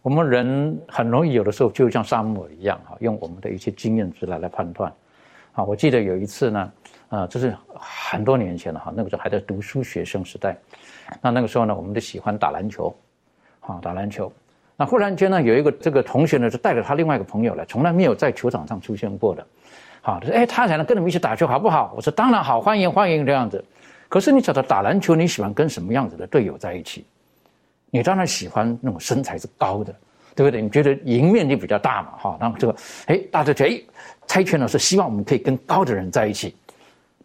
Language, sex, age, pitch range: Chinese, male, 60-79, 105-160 Hz